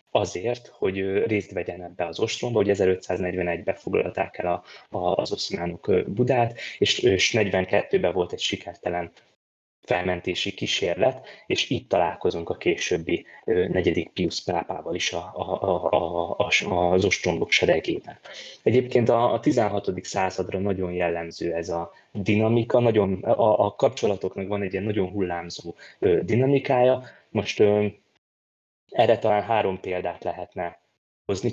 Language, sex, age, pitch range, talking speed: Hungarian, male, 20-39, 90-115 Hz, 110 wpm